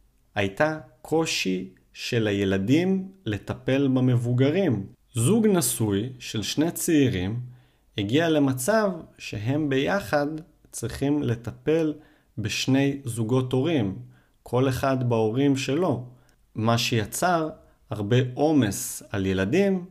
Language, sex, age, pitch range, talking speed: Hebrew, male, 40-59, 105-145 Hz, 90 wpm